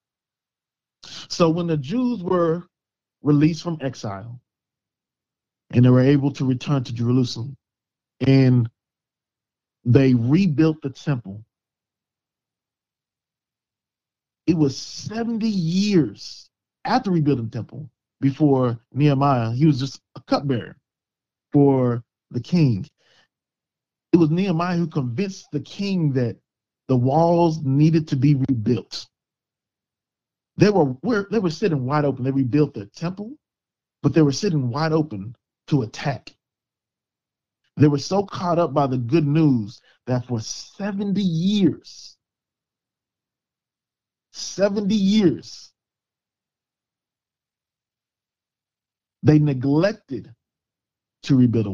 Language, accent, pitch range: English, American, 125-170 Hz